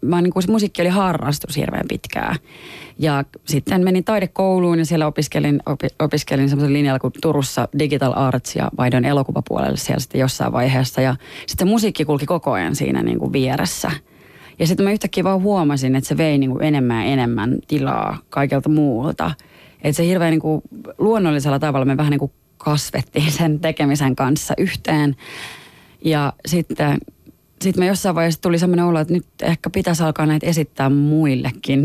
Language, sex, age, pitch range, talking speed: Finnish, female, 30-49, 140-165 Hz, 165 wpm